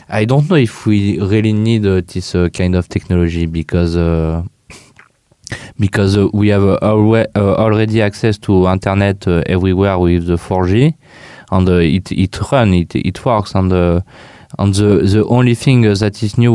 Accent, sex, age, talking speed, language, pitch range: French, male, 20-39, 185 wpm, English, 90-105 Hz